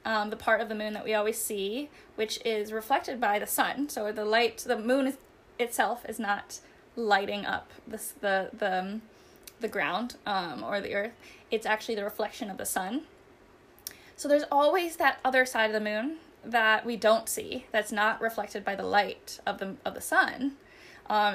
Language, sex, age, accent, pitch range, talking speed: English, female, 10-29, American, 215-265 Hz, 190 wpm